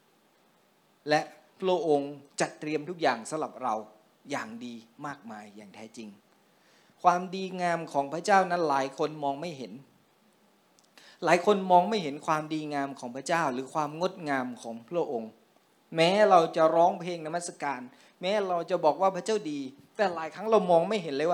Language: Thai